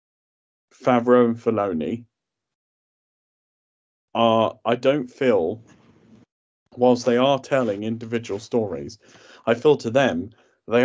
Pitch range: 110-125 Hz